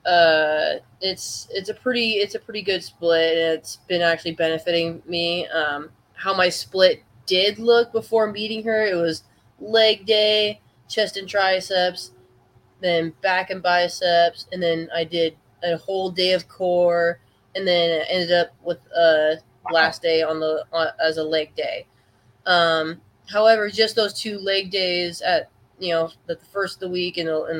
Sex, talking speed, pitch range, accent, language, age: female, 165 wpm, 155-185 Hz, American, English, 20-39